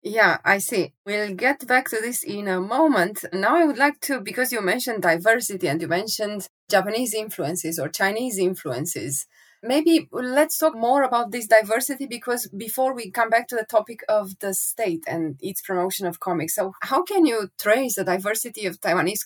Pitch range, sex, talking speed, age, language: 180-240 Hz, female, 185 wpm, 20-39, English